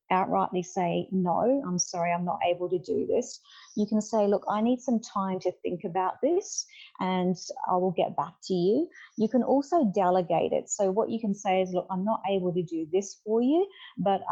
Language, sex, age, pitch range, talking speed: English, female, 40-59, 180-220 Hz, 215 wpm